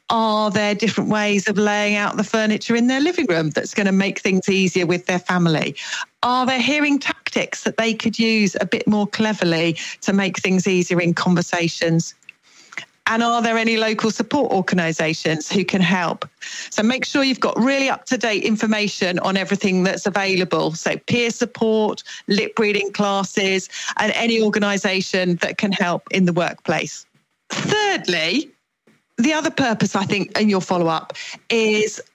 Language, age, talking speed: English, 40-59, 160 wpm